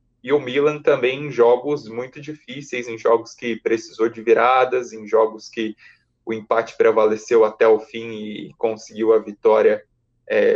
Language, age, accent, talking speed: Portuguese, 20-39, Brazilian, 160 wpm